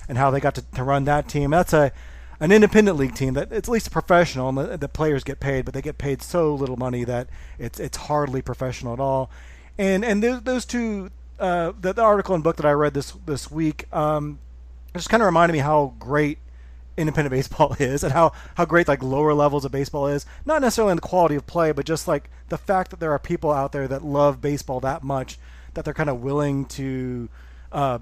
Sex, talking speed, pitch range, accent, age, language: male, 235 wpm, 130-160 Hz, American, 30-49, English